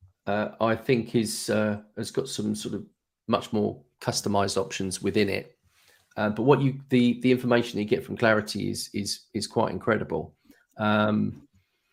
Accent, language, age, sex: British, English, 40-59, male